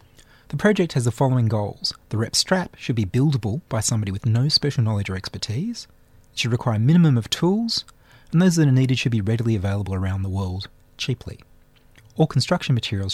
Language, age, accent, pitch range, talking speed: English, 30-49, Australian, 110-155 Hz, 195 wpm